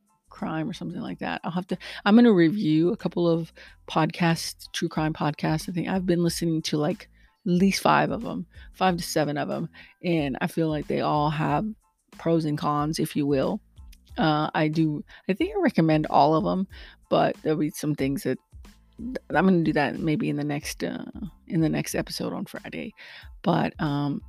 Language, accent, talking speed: English, American, 200 wpm